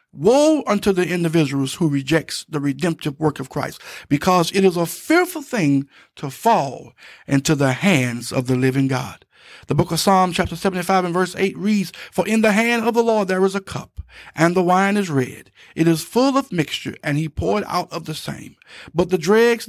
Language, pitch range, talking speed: English, 155-225 Hz, 205 wpm